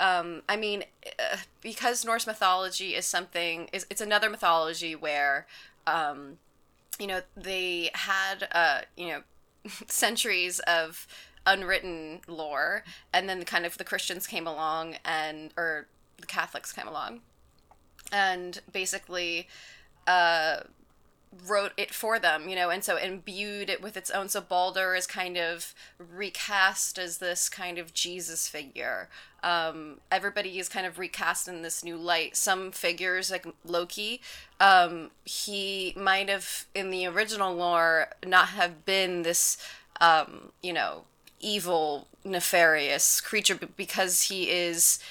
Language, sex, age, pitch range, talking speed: English, female, 20-39, 170-195 Hz, 135 wpm